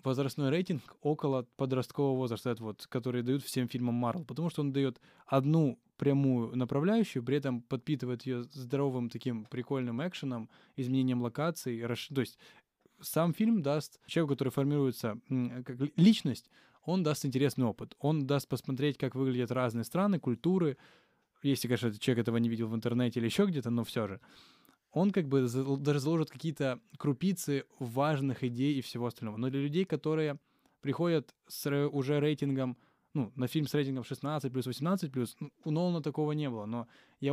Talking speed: 165 wpm